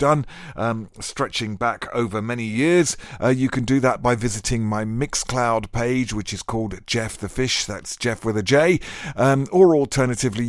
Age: 50-69